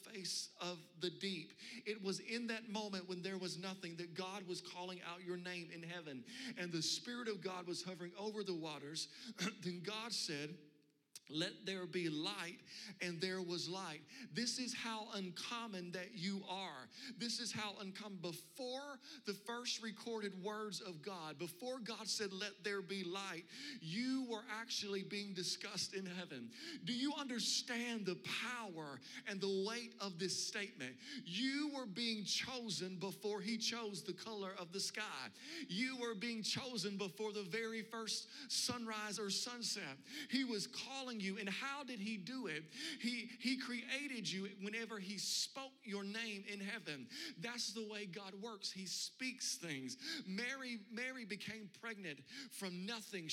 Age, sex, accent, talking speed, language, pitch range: 40-59, male, American, 160 wpm, English, 185-230 Hz